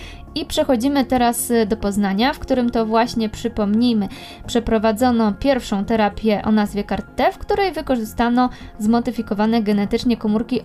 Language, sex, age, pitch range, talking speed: Polish, female, 20-39, 220-260 Hz, 130 wpm